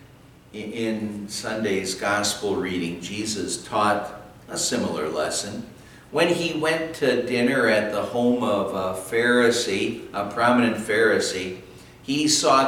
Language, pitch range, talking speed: English, 115-145 Hz, 120 wpm